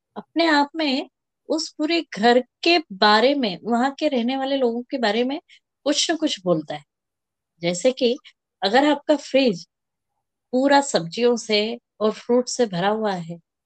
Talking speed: 160 wpm